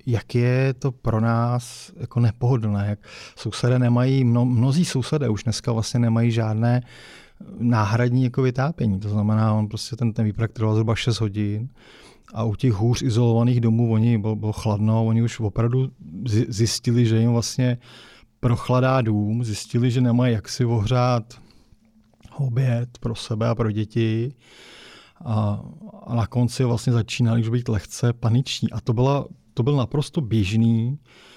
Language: Czech